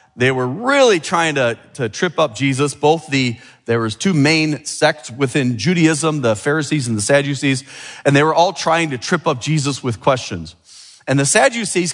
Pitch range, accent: 135-180 Hz, American